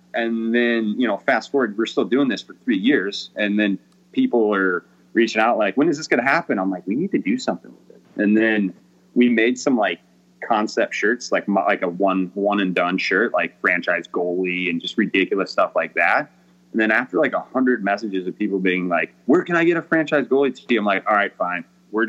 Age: 30-49